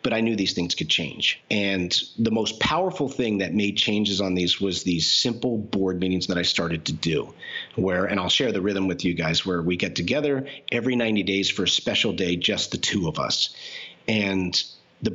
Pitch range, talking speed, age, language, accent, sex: 95-120 Hz, 215 wpm, 40-59, English, American, male